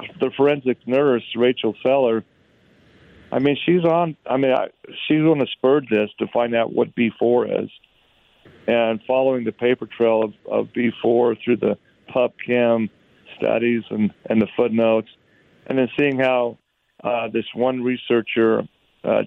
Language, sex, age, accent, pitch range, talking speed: English, male, 40-59, American, 115-135 Hz, 150 wpm